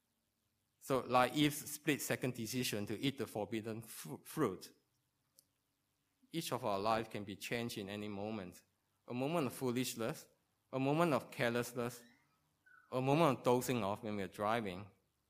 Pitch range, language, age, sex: 105-130 Hz, English, 20-39, male